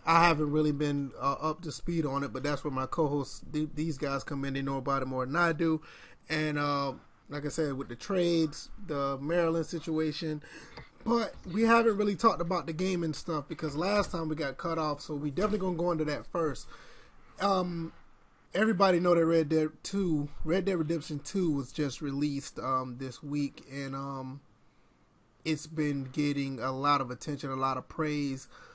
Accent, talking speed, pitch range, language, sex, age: American, 195 wpm, 140-165 Hz, English, male, 30-49